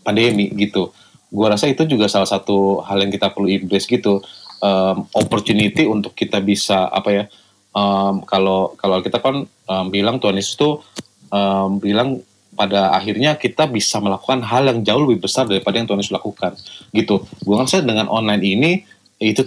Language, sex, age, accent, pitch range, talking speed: Indonesian, male, 20-39, native, 95-115 Hz, 165 wpm